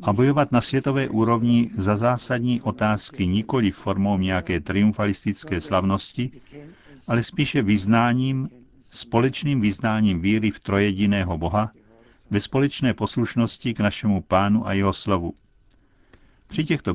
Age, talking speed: 50-69, 120 wpm